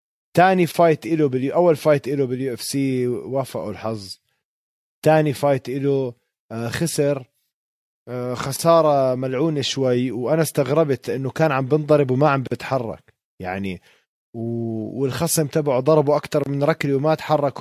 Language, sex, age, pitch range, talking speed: Arabic, male, 20-39, 120-155 Hz, 130 wpm